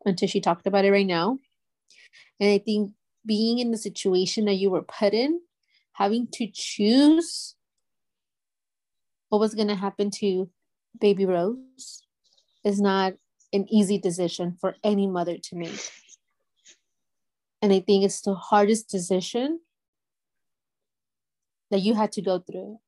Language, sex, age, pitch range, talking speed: English, female, 30-49, 185-215 Hz, 140 wpm